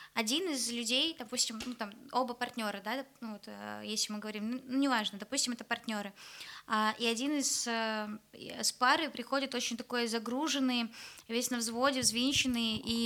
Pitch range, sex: 235-275 Hz, female